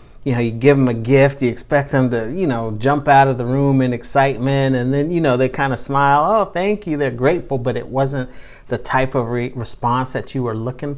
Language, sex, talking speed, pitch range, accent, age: English, male, 245 wpm, 120-140 Hz, American, 40-59